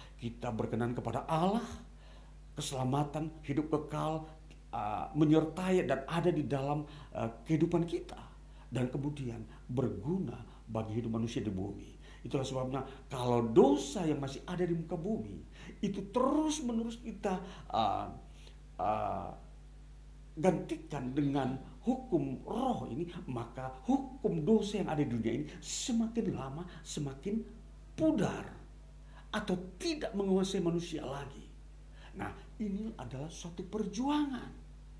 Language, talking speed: Indonesian, 110 wpm